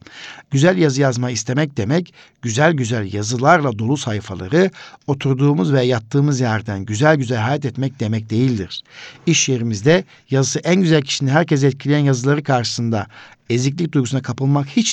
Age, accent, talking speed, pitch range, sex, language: 60-79, native, 135 wpm, 120-155 Hz, male, Turkish